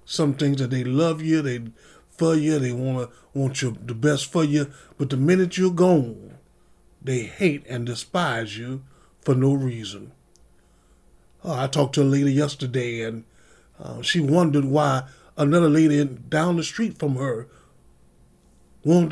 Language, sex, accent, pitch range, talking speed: English, male, American, 125-160 Hz, 165 wpm